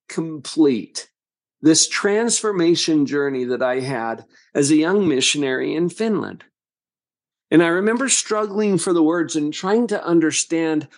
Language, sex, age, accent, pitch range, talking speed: English, male, 50-69, American, 155-205 Hz, 130 wpm